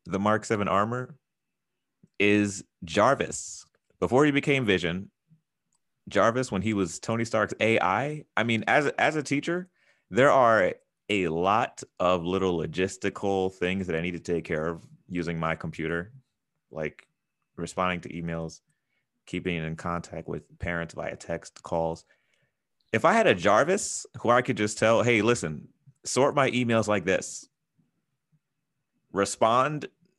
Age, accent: 30-49, American